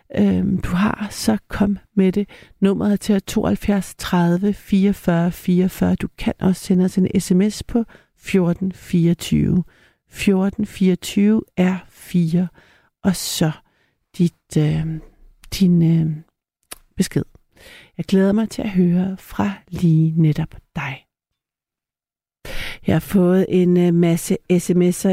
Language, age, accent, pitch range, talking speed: Danish, 60-79, native, 165-195 Hz, 110 wpm